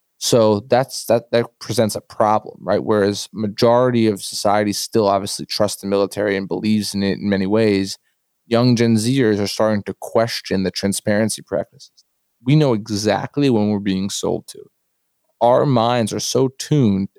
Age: 20-39